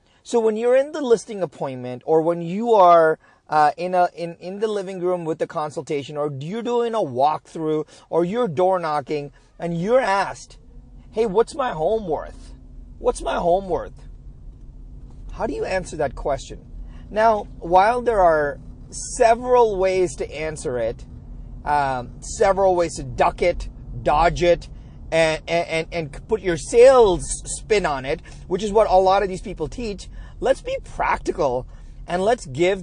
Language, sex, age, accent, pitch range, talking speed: English, male, 40-59, American, 145-200 Hz, 165 wpm